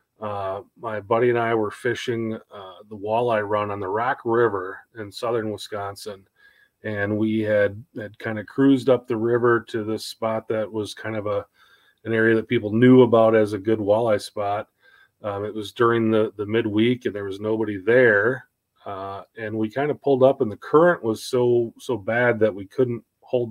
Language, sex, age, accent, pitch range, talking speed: English, male, 30-49, American, 105-130 Hz, 195 wpm